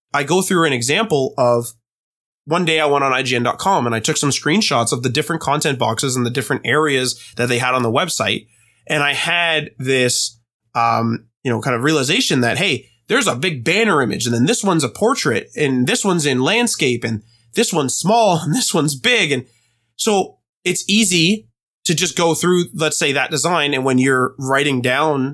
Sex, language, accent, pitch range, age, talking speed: male, English, American, 120-170 Hz, 20-39, 200 wpm